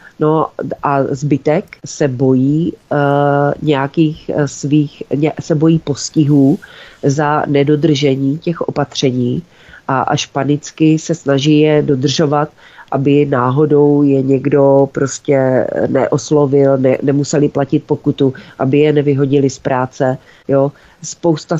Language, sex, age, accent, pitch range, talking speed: Czech, female, 40-59, native, 140-165 Hz, 110 wpm